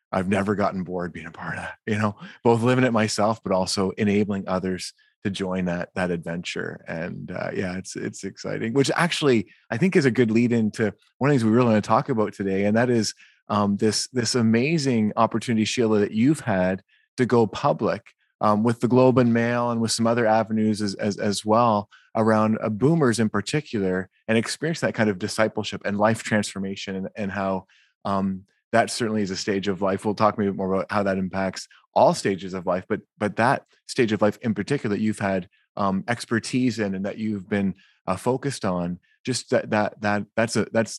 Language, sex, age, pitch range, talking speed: English, male, 30-49, 95-115 Hz, 205 wpm